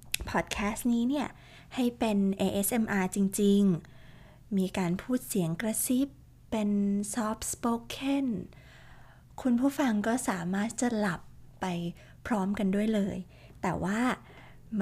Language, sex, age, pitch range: Thai, female, 20-39, 185-230 Hz